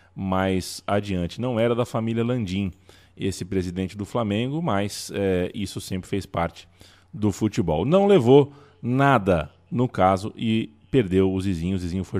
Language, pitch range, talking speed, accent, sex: Portuguese, 95-120 Hz, 150 wpm, Brazilian, male